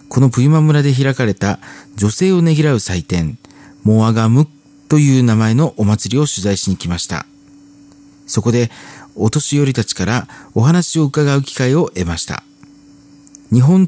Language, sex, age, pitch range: Japanese, male, 40-59, 100-145 Hz